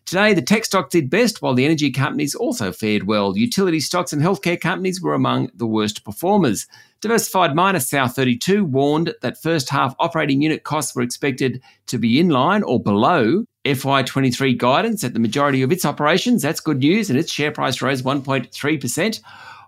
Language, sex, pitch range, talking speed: English, male, 125-175 Hz, 175 wpm